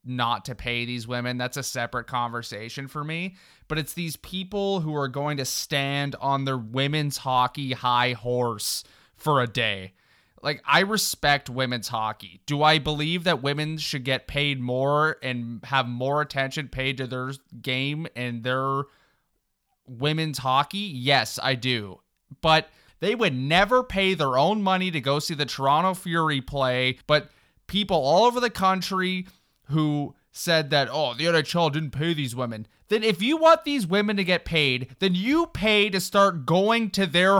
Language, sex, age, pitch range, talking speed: English, male, 30-49, 130-185 Hz, 170 wpm